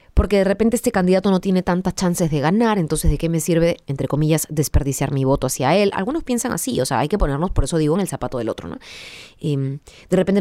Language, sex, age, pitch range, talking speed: Spanish, female, 20-39, 155-195 Hz, 240 wpm